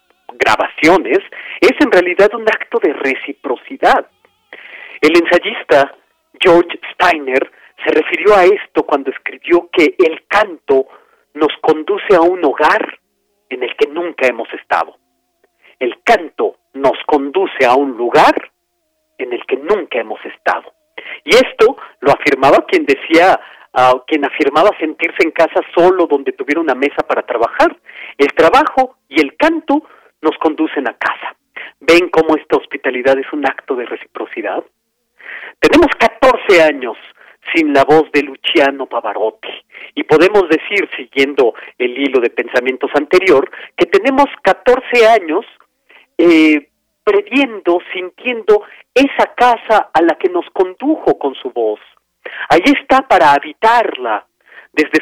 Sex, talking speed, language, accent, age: male, 130 wpm, Spanish, Mexican, 40-59